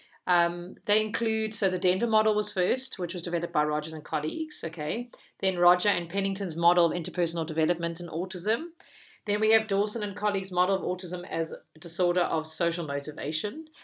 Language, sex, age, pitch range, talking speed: English, female, 40-59, 165-210 Hz, 180 wpm